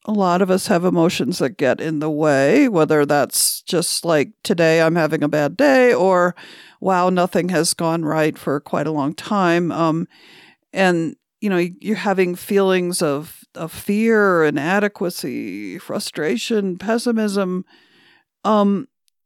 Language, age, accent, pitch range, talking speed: English, 50-69, American, 170-215 Hz, 145 wpm